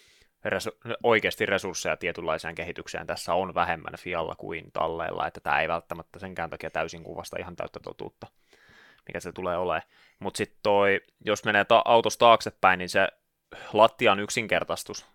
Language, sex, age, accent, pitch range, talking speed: Finnish, male, 20-39, native, 85-105 Hz, 150 wpm